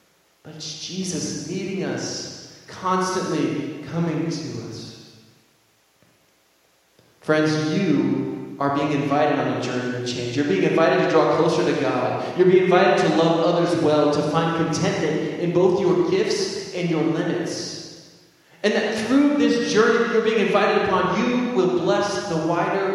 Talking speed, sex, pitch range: 150 wpm, male, 145-185 Hz